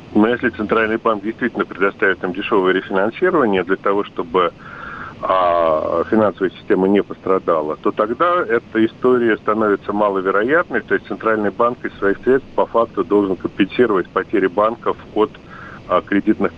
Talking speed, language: 135 wpm, Russian